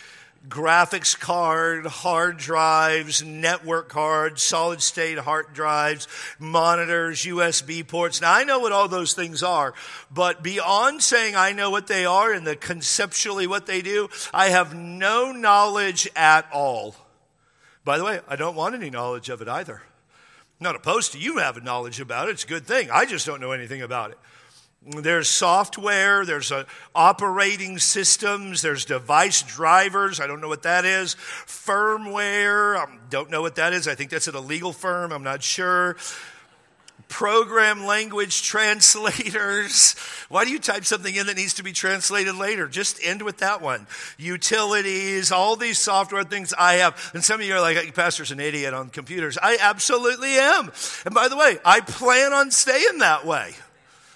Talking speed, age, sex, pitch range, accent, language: 170 wpm, 50-69, male, 160-205 Hz, American, English